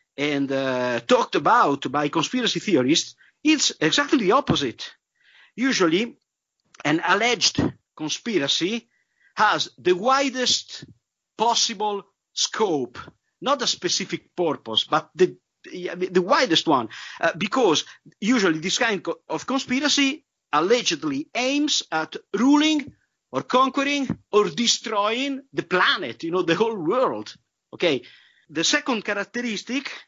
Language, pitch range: English, 175-275 Hz